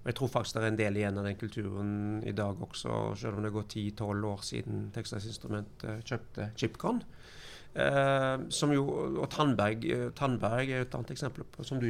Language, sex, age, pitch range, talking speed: English, male, 40-59, 115-155 Hz, 175 wpm